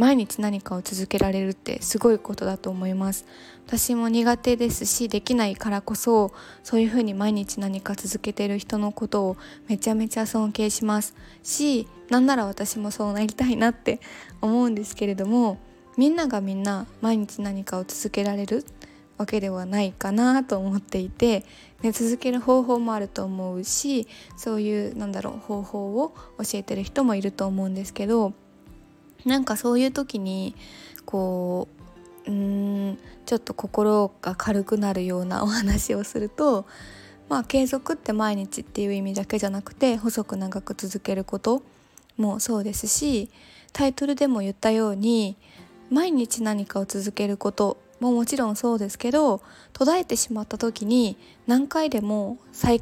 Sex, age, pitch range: female, 20-39, 200-240 Hz